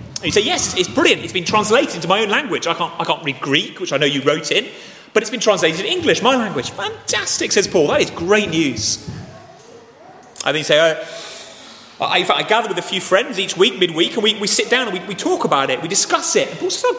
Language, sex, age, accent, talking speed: English, male, 30-49, British, 265 wpm